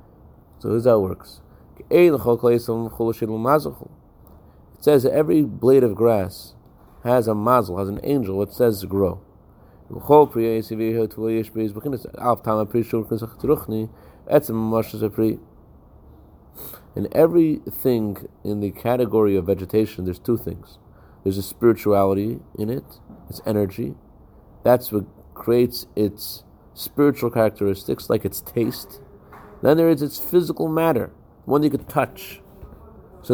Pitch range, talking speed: 110-130 Hz, 110 wpm